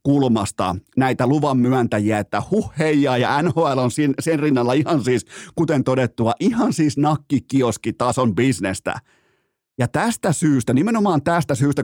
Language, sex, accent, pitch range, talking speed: Finnish, male, native, 125-170 Hz, 130 wpm